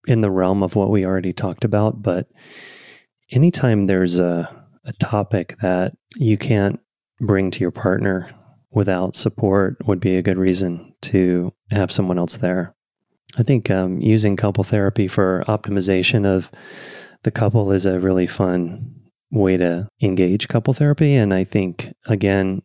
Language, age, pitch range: English, 30-49, 95-115 Hz